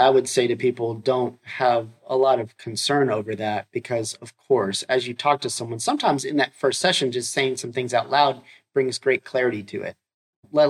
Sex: male